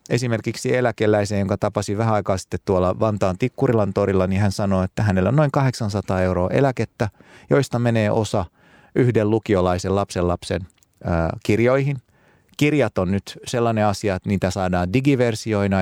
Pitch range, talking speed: 90-110 Hz, 150 wpm